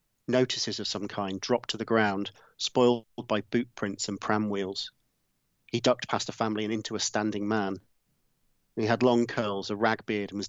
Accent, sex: British, male